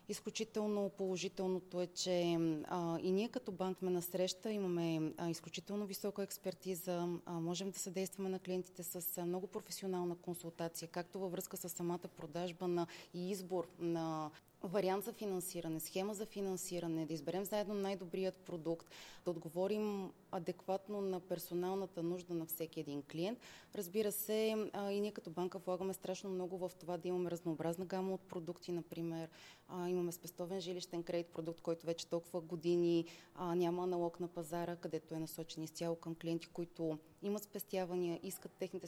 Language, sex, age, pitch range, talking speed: Bulgarian, female, 20-39, 170-190 Hz, 155 wpm